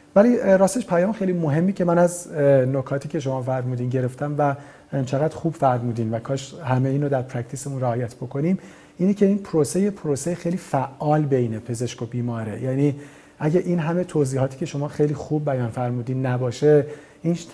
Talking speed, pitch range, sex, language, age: 170 wpm, 130-155 Hz, male, Persian, 40-59